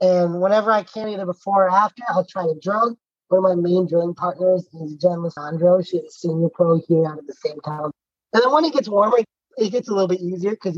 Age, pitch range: 20-39, 170-200 Hz